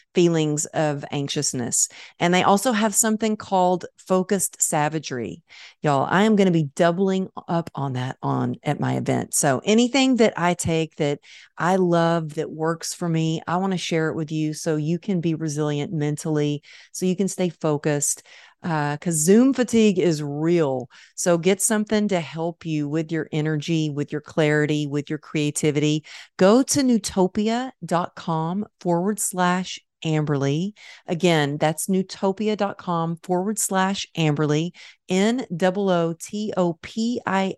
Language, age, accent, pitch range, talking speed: English, 40-59, American, 155-200 Hz, 150 wpm